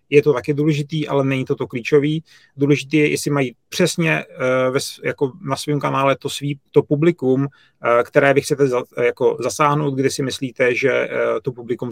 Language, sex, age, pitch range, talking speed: Czech, male, 30-49, 125-145 Hz, 190 wpm